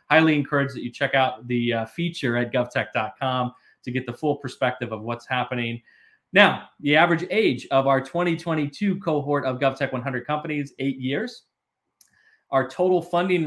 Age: 30-49